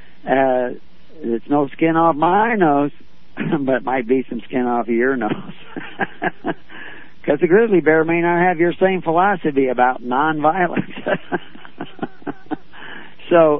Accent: American